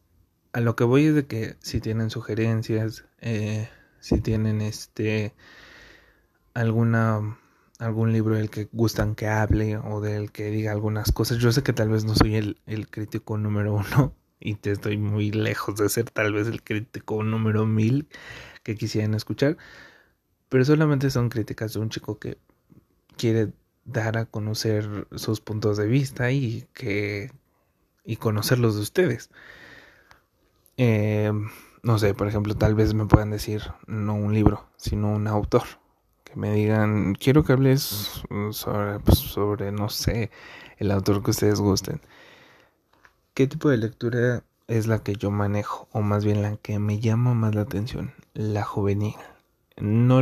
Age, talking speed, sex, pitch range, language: 20-39, 155 wpm, male, 105-115 Hz, Spanish